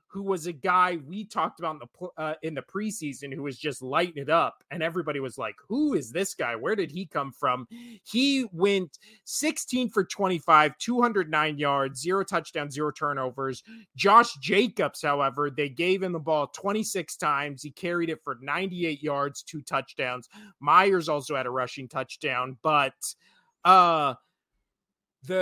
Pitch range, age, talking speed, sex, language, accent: 150-195 Hz, 30-49, 165 wpm, male, English, American